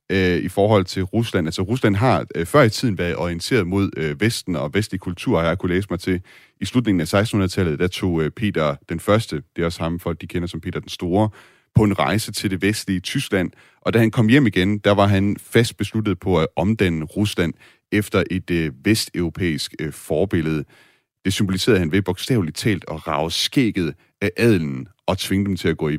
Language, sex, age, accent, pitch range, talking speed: Danish, male, 30-49, native, 85-105 Hz, 200 wpm